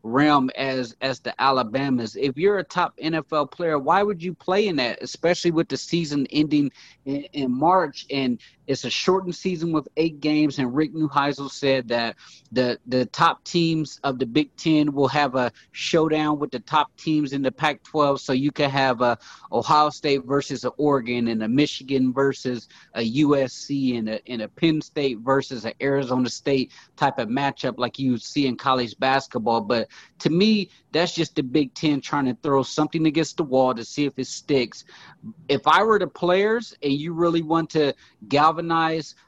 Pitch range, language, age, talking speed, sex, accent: 135-160 Hz, English, 30-49, 190 wpm, male, American